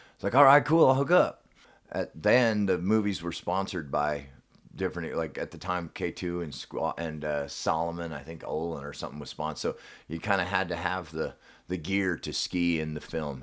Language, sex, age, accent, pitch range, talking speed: English, male, 30-49, American, 80-100 Hz, 210 wpm